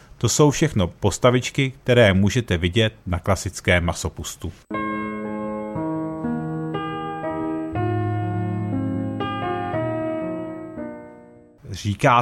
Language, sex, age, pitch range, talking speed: Czech, male, 40-59, 95-125 Hz, 55 wpm